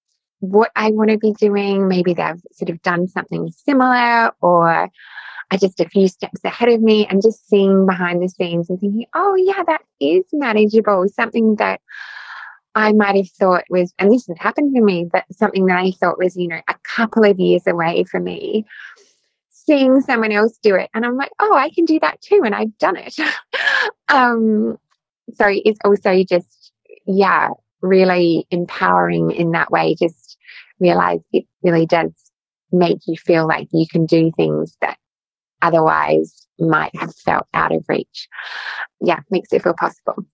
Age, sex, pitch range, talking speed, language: 20-39, female, 175-230 Hz, 175 wpm, English